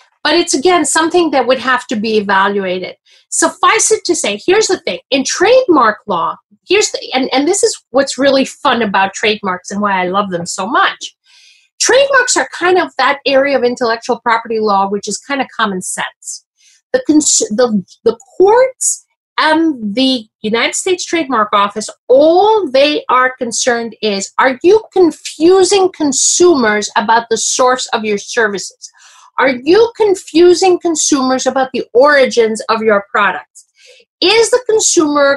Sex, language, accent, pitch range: female, English, American, 240-370 Hz